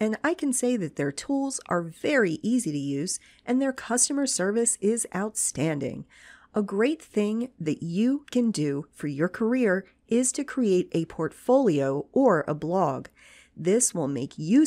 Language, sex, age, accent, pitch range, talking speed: English, female, 40-59, American, 165-245 Hz, 165 wpm